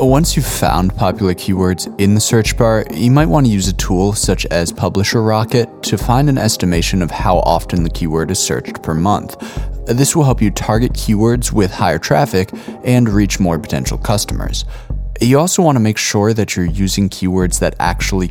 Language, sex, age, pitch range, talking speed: English, male, 20-39, 90-120 Hz, 195 wpm